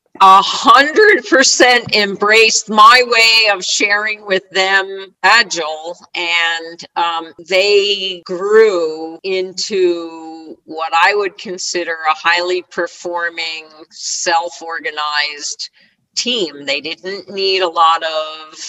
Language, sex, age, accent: English, female, 50-69, American